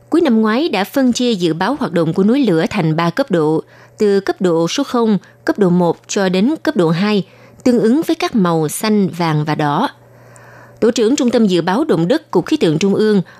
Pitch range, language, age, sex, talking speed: 175-240 Hz, Vietnamese, 20-39, female, 235 wpm